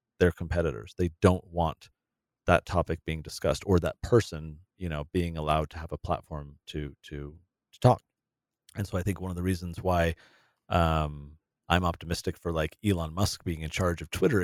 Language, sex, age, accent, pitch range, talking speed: English, male, 30-49, American, 85-105 Hz, 185 wpm